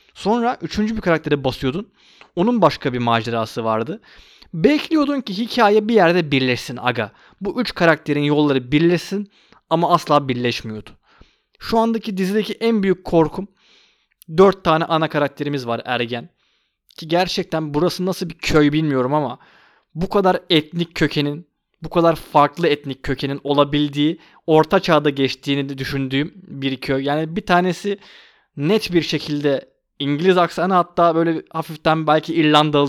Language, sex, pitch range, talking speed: Turkish, male, 140-190 Hz, 135 wpm